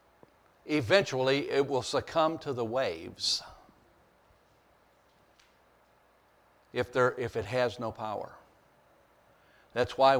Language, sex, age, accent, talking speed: English, male, 60-79, American, 90 wpm